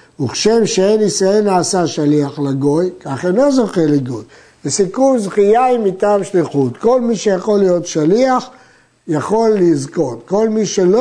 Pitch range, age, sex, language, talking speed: 170-230 Hz, 60-79, male, Hebrew, 135 wpm